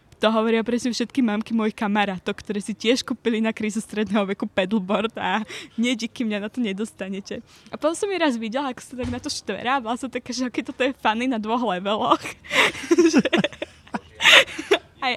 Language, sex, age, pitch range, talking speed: Slovak, female, 20-39, 220-295 Hz, 185 wpm